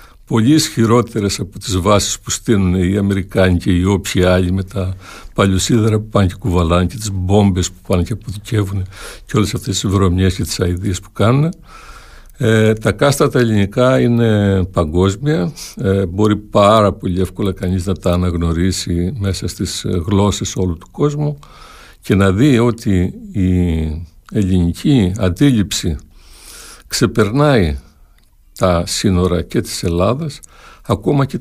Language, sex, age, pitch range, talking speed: Greek, male, 60-79, 90-115 Hz, 140 wpm